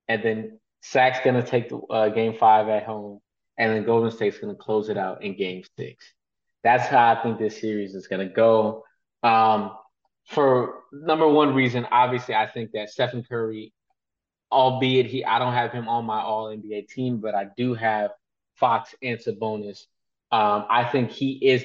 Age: 20-39